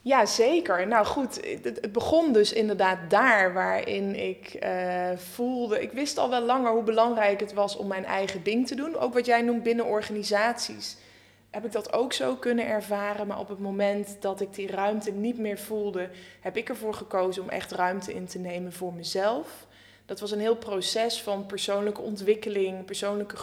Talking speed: 185 wpm